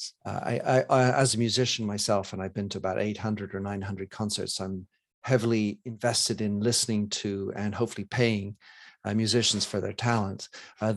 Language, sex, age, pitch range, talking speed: English, male, 50-69, 105-120 Hz, 175 wpm